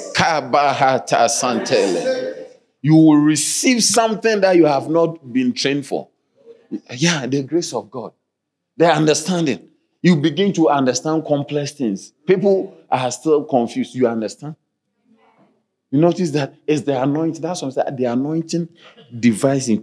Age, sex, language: 40-59, male, English